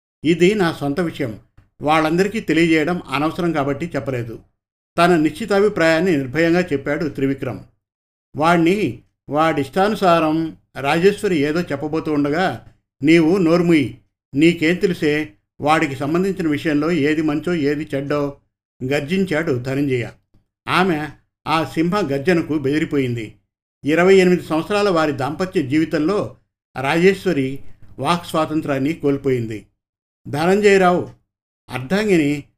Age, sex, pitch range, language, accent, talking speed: 50-69, male, 135-170 Hz, Telugu, native, 90 wpm